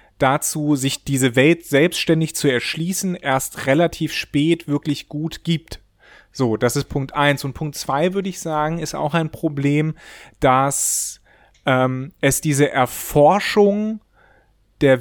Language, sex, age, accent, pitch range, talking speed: German, male, 30-49, German, 125-165 Hz, 135 wpm